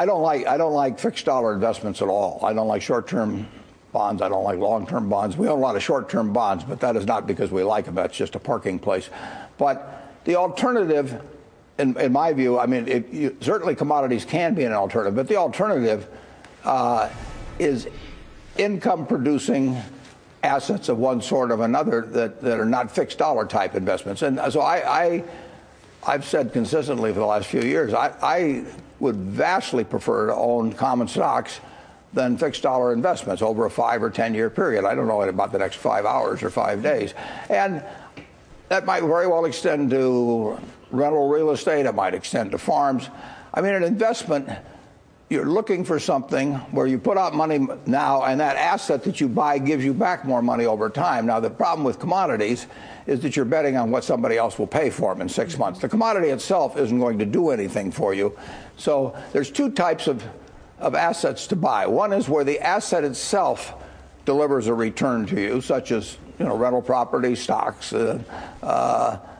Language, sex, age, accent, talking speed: English, male, 60-79, American, 195 wpm